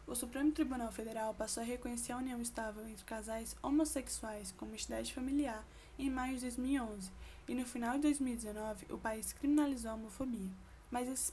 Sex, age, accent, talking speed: female, 10-29, Brazilian, 170 wpm